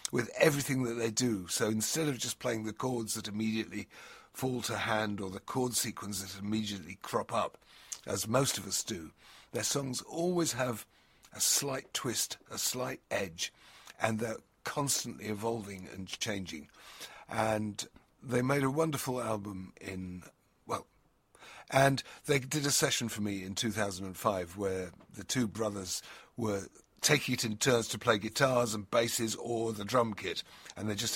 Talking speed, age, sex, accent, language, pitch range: 160 wpm, 50-69, male, British, English, 100-125 Hz